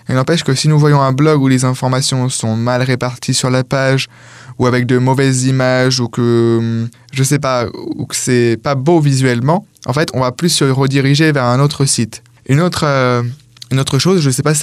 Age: 20-39